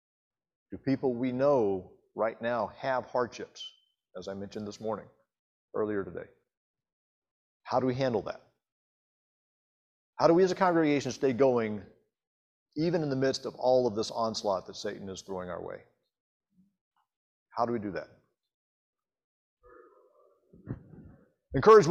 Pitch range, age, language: 115-175 Hz, 40-59, English